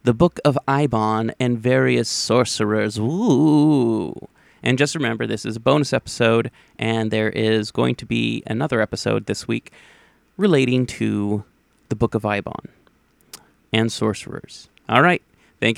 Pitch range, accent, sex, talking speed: 110-145 Hz, American, male, 140 wpm